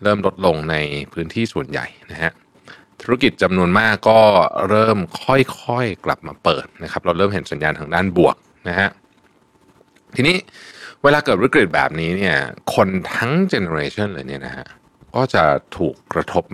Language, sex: Thai, male